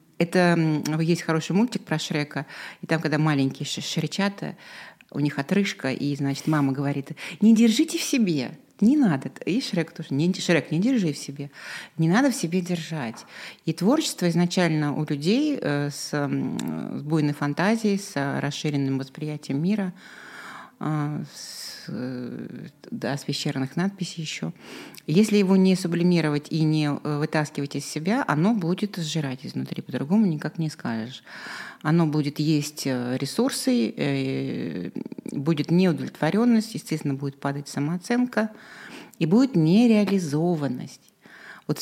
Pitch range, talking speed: 145-190 Hz, 125 wpm